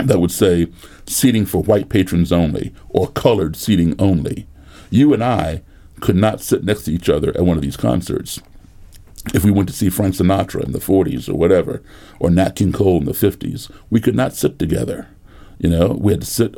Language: English